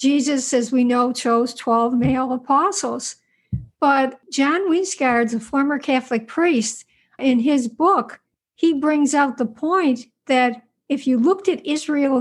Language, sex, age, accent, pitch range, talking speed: English, female, 60-79, American, 240-280 Hz, 145 wpm